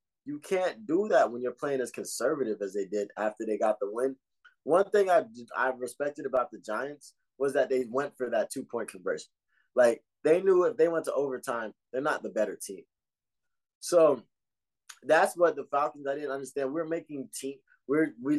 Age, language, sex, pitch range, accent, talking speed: 20-39, English, male, 120-165 Hz, American, 195 wpm